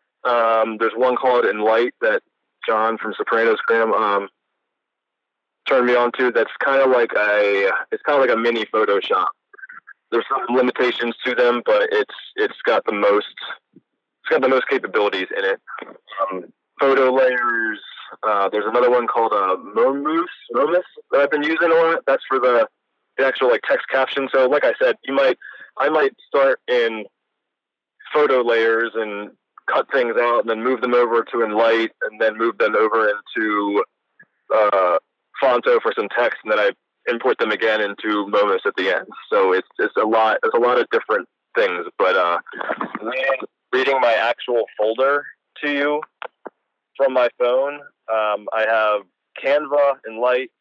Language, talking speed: English, 170 wpm